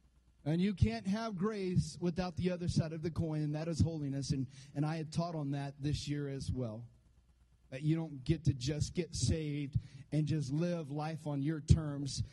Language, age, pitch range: English, 30-49, 135-175 Hz